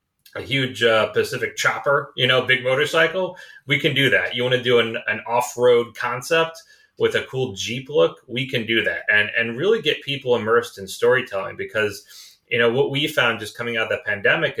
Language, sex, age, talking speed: English, male, 30-49, 205 wpm